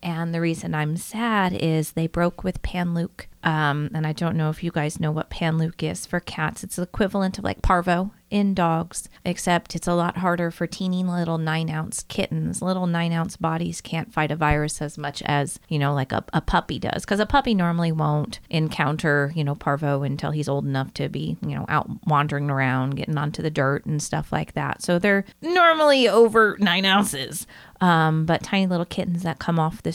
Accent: American